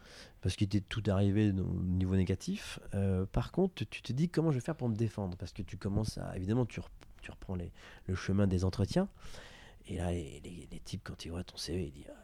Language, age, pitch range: French, 30-49, 90-115 Hz